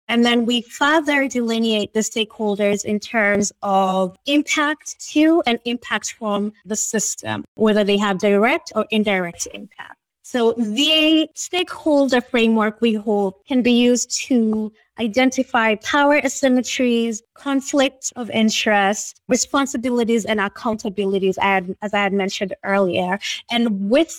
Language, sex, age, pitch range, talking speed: English, female, 20-39, 210-255 Hz, 125 wpm